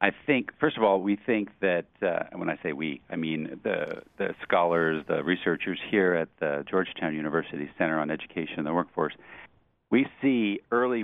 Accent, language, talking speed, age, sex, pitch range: American, English, 185 wpm, 50-69, male, 80-100 Hz